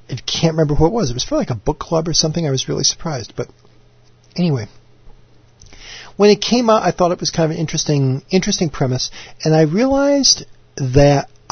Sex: male